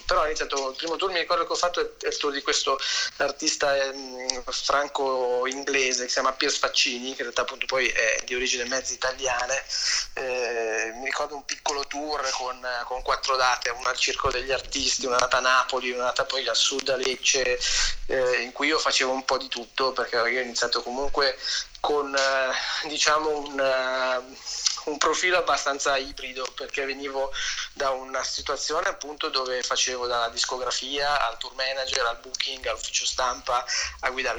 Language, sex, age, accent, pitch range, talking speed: Italian, male, 20-39, native, 125-145 Hz, 175 wpm